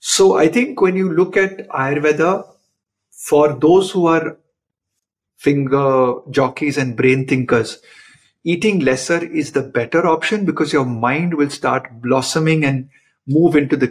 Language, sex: Hindi, male